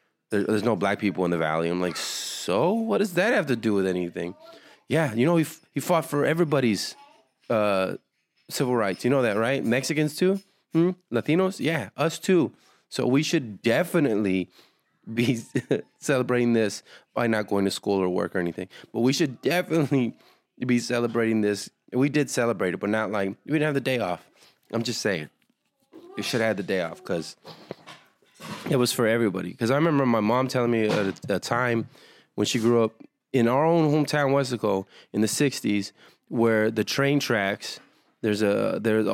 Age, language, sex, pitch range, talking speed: 20-39, English, male, 100-140 Hz, 180 wpm